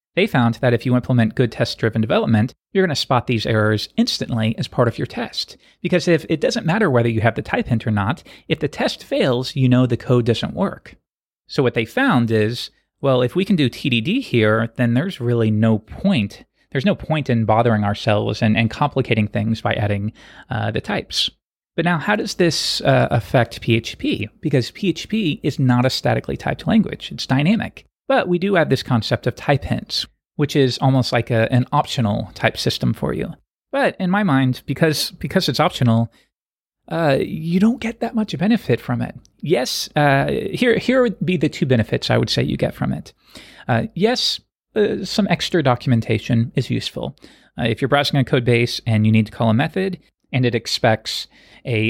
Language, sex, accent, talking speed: English, male, American, 200 wpm